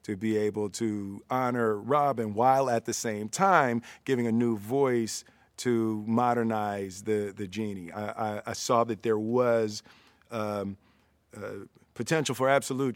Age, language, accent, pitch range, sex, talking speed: 40-59, English, American, 110-130 Hz, male, 150 wpm